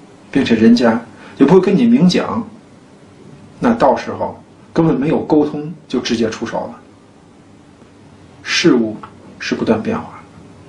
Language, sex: Chinese, male